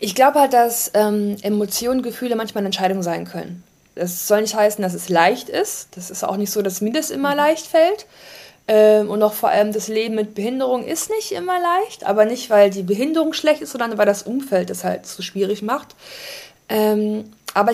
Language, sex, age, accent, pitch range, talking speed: German, female, 20-39, German, 195-250 Hz, 210 wpm